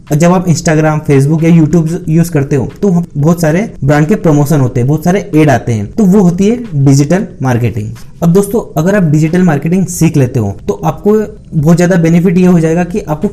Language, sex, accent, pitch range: Hindi, male, native, 145-180 Hz